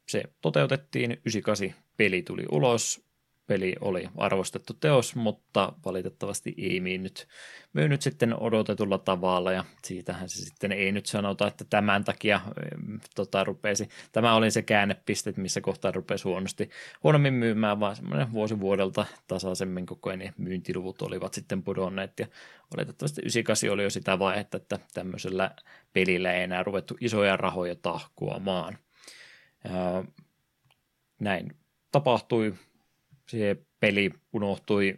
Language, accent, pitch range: Finnish, native, 95-110 Hz